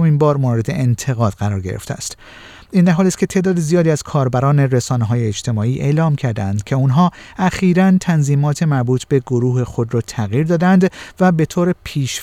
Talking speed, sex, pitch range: 170 wpm, male, 125-175 Hz